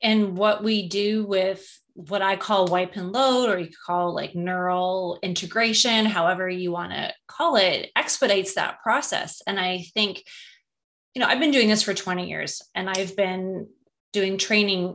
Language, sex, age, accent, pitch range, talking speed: English, female, 30-49, American, 185-225 Hz, 175 wpm